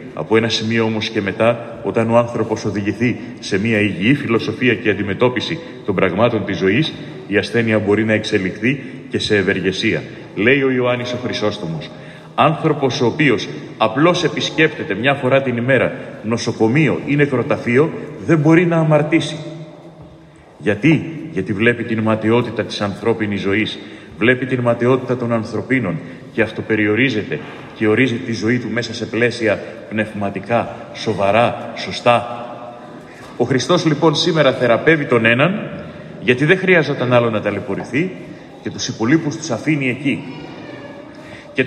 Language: Greek